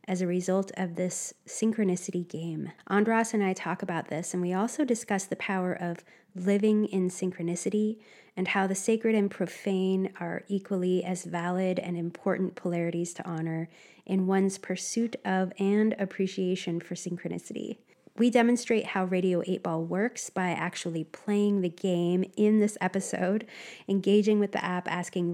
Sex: female